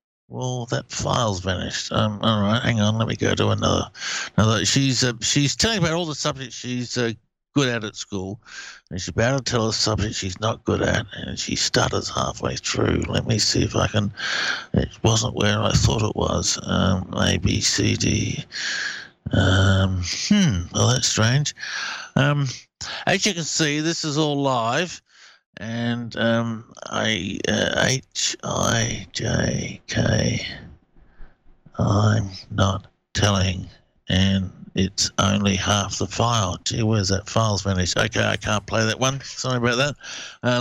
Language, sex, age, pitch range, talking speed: English, male, 50-69, 100-125 Hz, 160 wpm